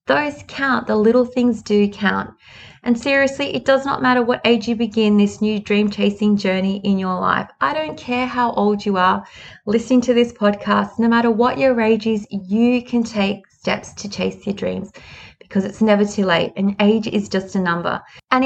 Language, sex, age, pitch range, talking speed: English, female, 20-39, 205-255 Hz, 200 wpm